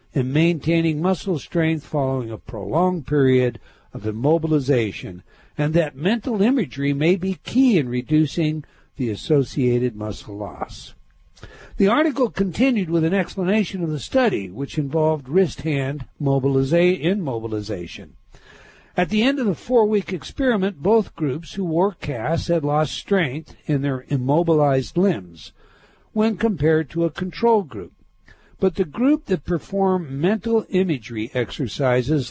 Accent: American